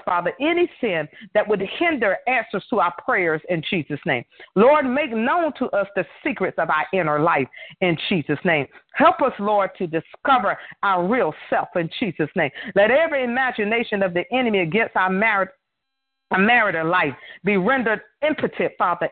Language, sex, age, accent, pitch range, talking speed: English, female, 40-59, American, 185-245 Hz, 170 wpm